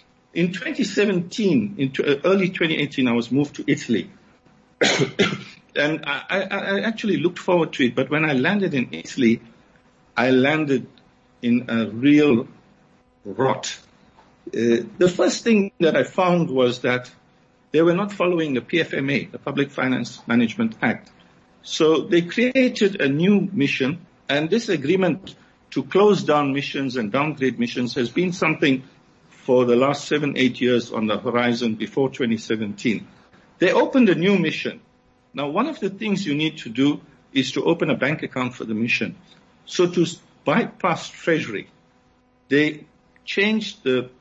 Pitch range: 125-185 Hz